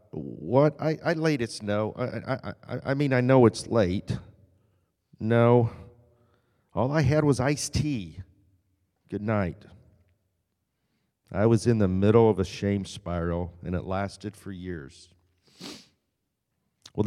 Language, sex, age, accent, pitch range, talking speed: English, male, 50-69, American, 90-115 Hz, 135 wpm